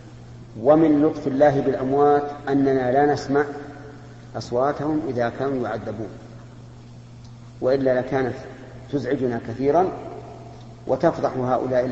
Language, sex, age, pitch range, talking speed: Arabic, male, 50-69, 120-140 Hz, 85 wpm